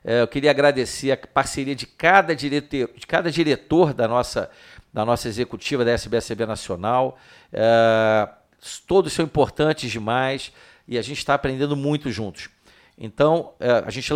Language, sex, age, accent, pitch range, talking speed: Portuguese, male, 50-69, Brazilian, 110-140 Hz, 125 wpm